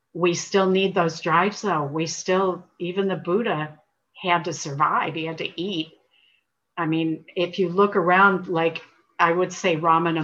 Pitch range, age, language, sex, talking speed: 165-195 Hz, 50-69, English, female, 170 wpm